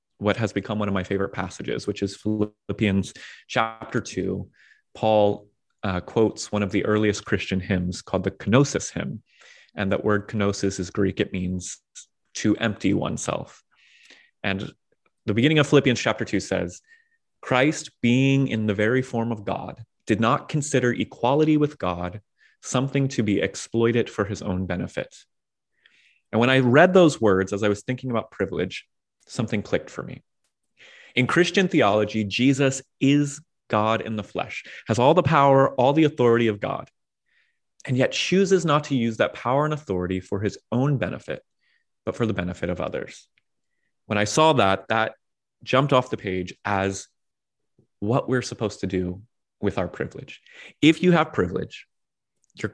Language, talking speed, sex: English, 165 wpm, male